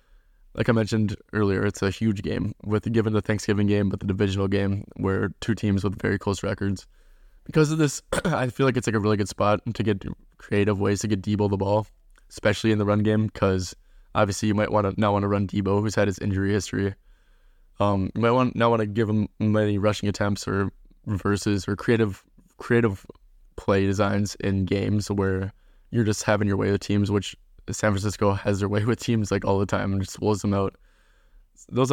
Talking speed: 210 wpm